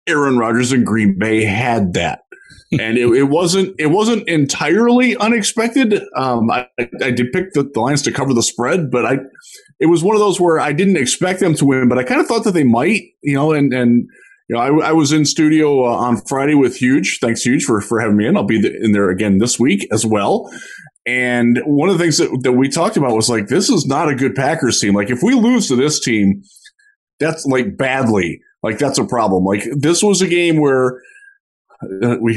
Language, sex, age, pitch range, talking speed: English, male, 20-39, 115-155 Hz, 225 wpm